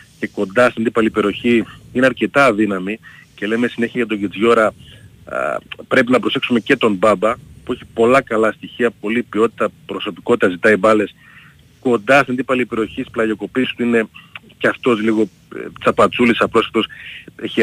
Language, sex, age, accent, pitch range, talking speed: Greek, male, 40-59, native, 105-130 Hz, 145 wpm